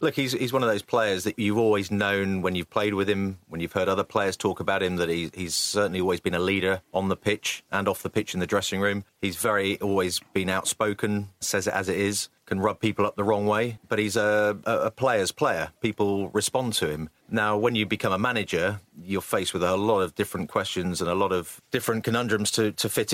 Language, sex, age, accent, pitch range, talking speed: English, male, 30-49, British, 90-105 Hz, 245 wpm